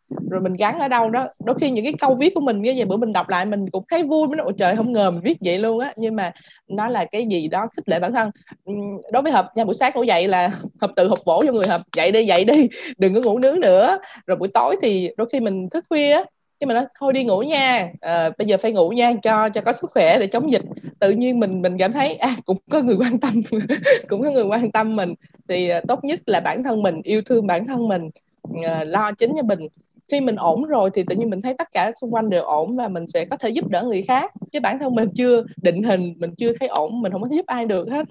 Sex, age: female, 20-39